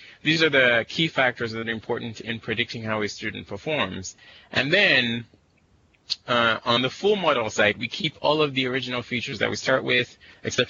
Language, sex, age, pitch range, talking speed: English, male, 20-39, 105-135 Hz, 190 wpm